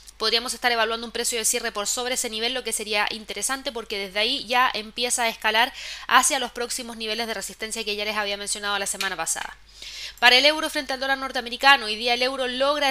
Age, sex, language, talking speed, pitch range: 20-39, female, Spanish, 225 wpm, 225-260 Hz